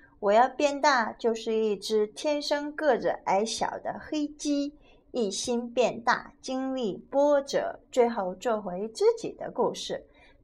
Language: Chinese